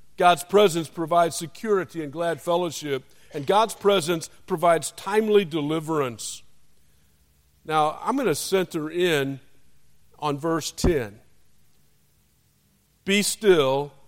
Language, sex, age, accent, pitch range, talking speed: English, male, 50-69, American, 140-200 Hz, 100 wpm